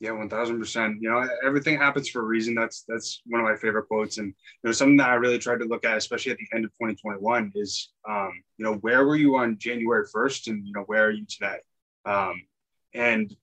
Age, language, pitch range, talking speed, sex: 20-39, English, 110-125 Hz, 230 wpm, male